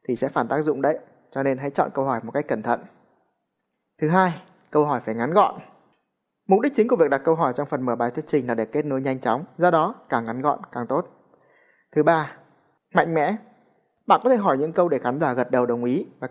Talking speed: 245 wpm